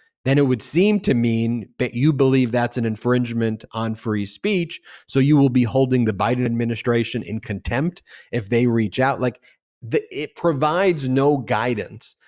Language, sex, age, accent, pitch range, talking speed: English, male, 30-49, American, 105-130 Hz, 165 wpm